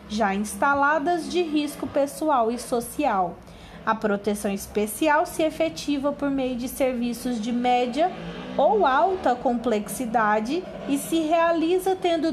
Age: 20-39